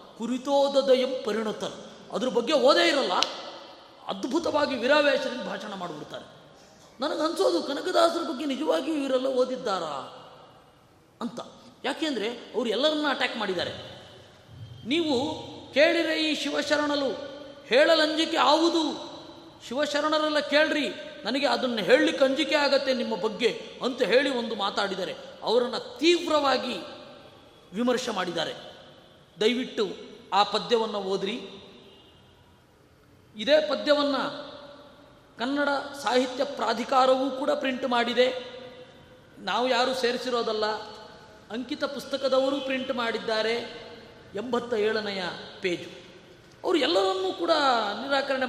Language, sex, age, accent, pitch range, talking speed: Kannada, female, 20-39, native, 230-290 Hz, 90 wpm